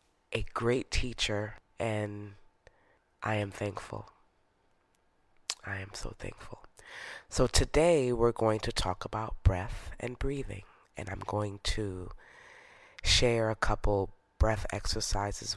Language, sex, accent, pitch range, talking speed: English, female, American, 100-125 Hz, 115 wpm